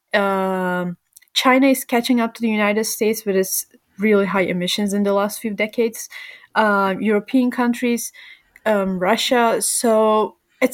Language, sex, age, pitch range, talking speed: English, female, 20-39, 200-245 Hz, 145 wpm